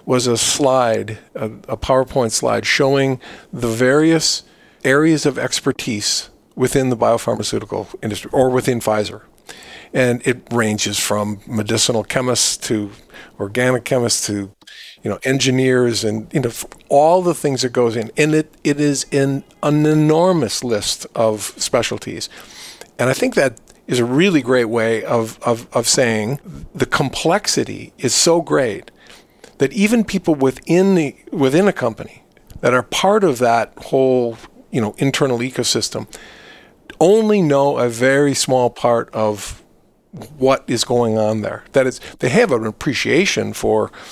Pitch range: 115-135 Hz